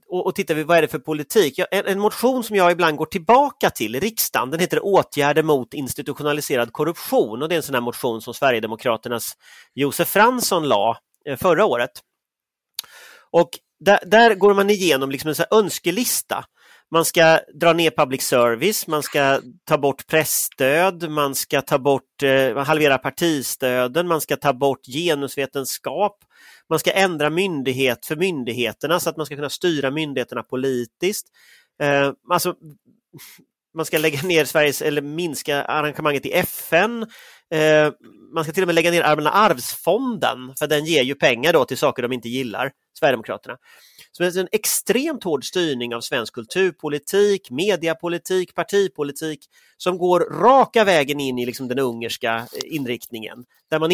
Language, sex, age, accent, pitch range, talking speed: Swedish, male, 30-49, native, 140-185 Hz, 155 wpm